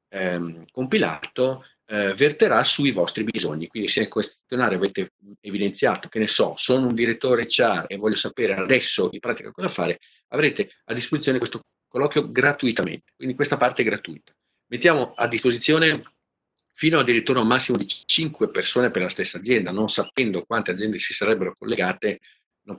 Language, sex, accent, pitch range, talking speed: Italian, male, native, 95-125 Hz, 155 wpm